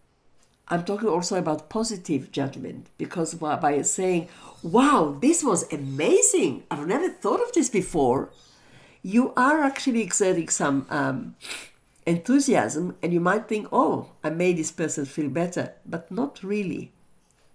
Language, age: English, 60-79